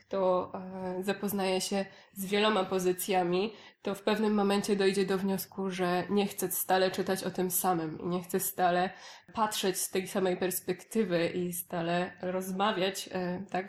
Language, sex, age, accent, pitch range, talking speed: Polish, female, 20-39, native, 180-200 Hz, 150 wpm